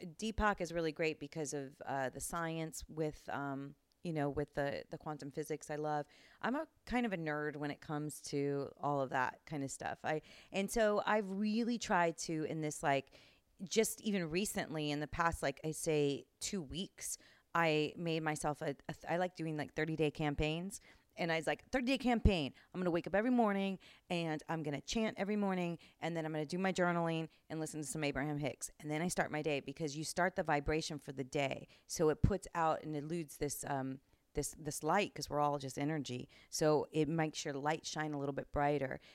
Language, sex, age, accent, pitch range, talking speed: English, female, 30-49, American, 145-175 Hz, 215 wpm